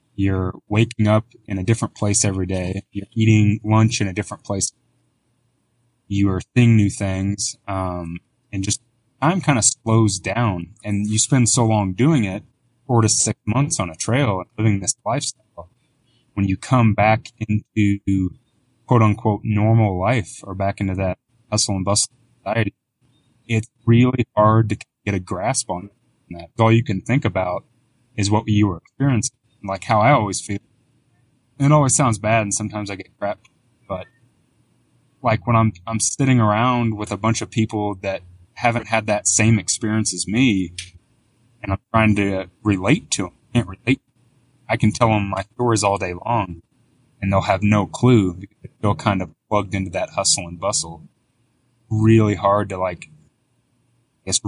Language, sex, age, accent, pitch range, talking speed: English, male, 20-39, American, 100-120 Hz, 170 wpm